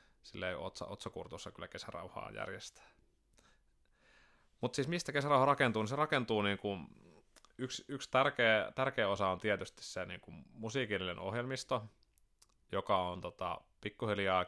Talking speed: 130 wpm